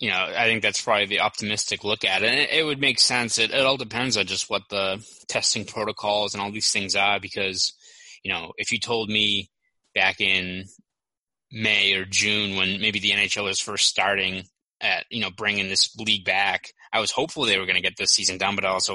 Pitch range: 95-110 Hz